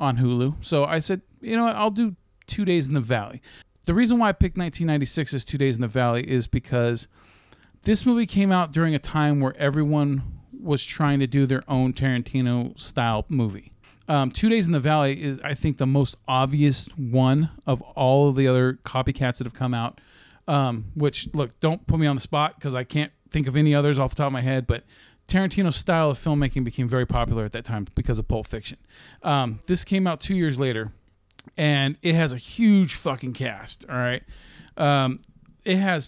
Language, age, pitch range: English, 40-59, 125-160 Hz